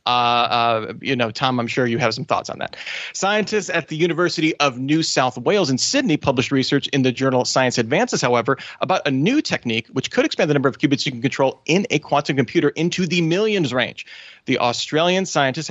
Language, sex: English, male